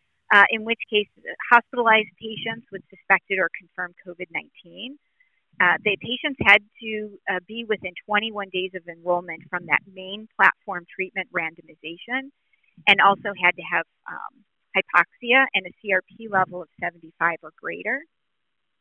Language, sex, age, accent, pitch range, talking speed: English, female, 40-59, American, 180-215 Hz, 135 wpm